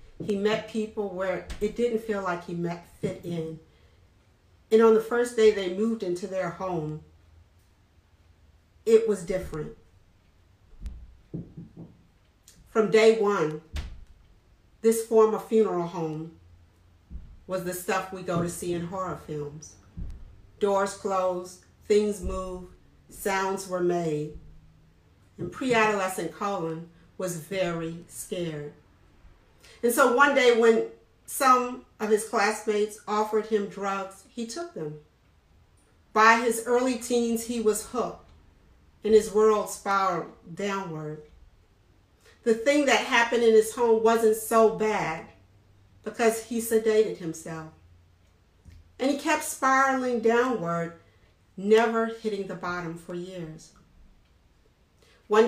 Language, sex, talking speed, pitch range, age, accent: English, female, 120 wpm, 145-220 Hz, 50-69, American